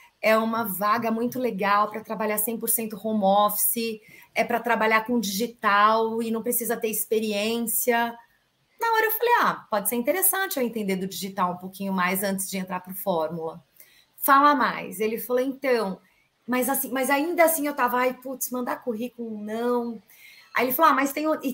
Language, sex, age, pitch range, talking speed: Portuguese, female, 30-49, 210-265 Hz, 180 wpm